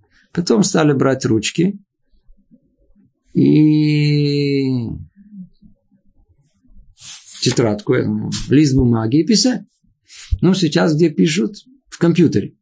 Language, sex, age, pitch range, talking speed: Russian, male, 50-69, 125-175 Hz, 75 wpm